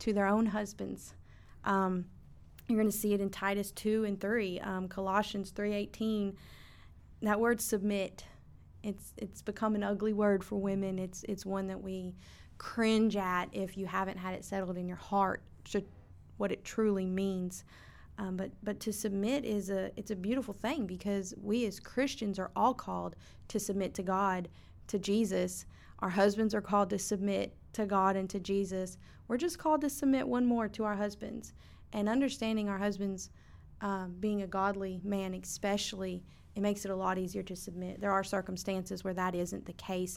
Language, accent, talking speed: English, American, 180 wpm